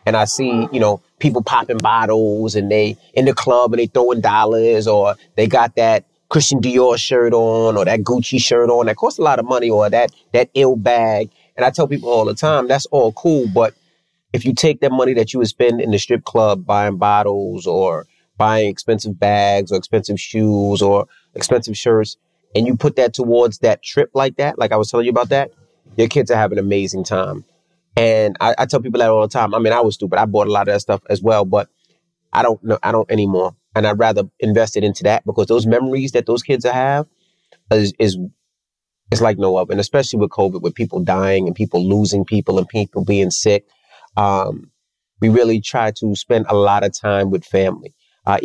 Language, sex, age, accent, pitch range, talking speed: English, male, 30-49, American, 100-120 Hz, 220 wpm